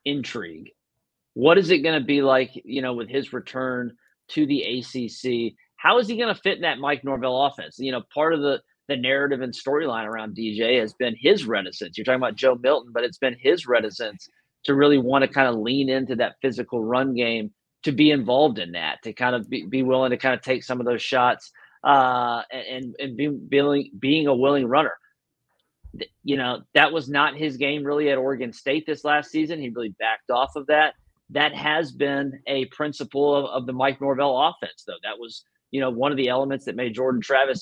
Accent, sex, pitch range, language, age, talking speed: American, male, 125-145 Hz, English, 30-49, 215 wpm